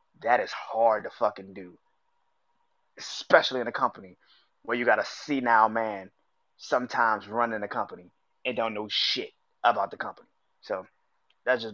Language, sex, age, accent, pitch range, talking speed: English, male, 20-39, American, 110-170 Hz, 155 wpm